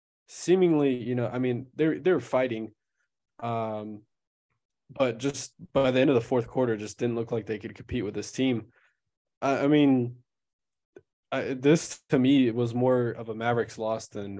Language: English